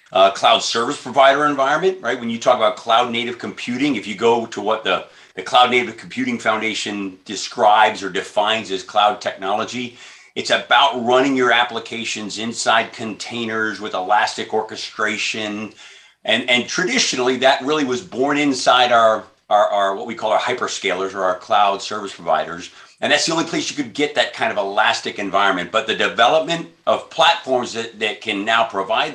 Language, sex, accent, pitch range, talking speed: English, male, American, 105-130 Hz, 175 wpm